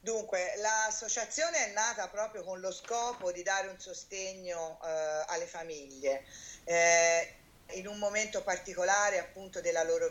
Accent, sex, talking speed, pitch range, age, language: native, female, 135 wpm, 165-200 Hz, 40-59, Italian